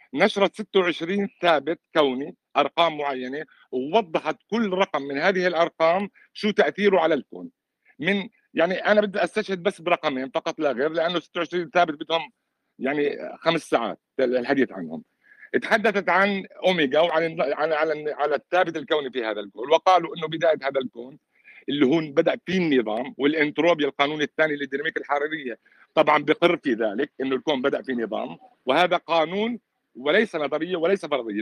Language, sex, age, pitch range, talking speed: Arabic, male, 60-79, 145-190 Hz, 145 wpm